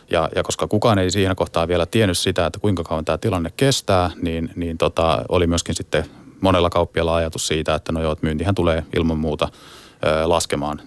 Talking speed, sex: 190 wpm, male